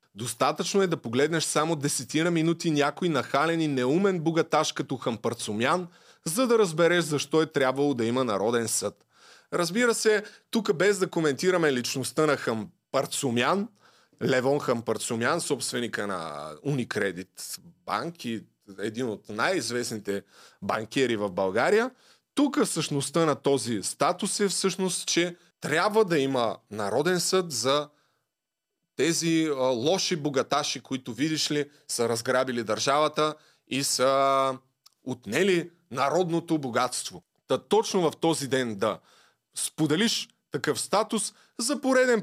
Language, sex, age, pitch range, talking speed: Bulgarian, male, 30-49, 130-175 Hz, 120 wpm